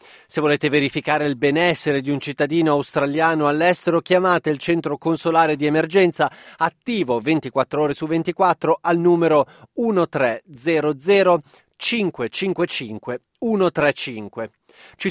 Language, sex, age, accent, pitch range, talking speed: Italian, male, 30-49, native, 145-180 Hz, 105 wpm